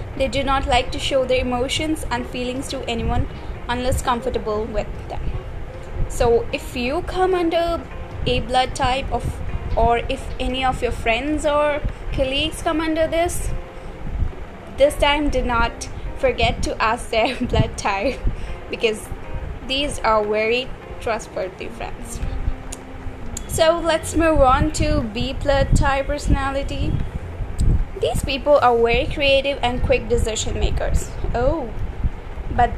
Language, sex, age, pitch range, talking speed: English, female, 20-39, 245-320 Hz, 130 wpm